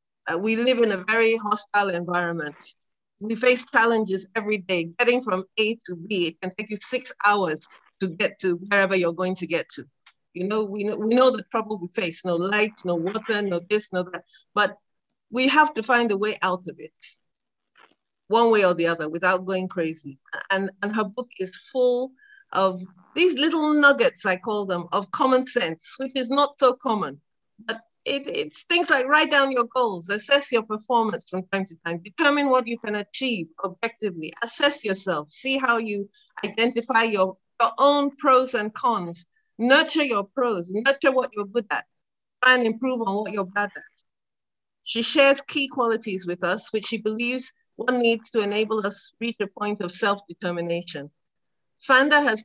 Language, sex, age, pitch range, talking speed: English, female, 50-69, 185-250 Hz, 185 wpm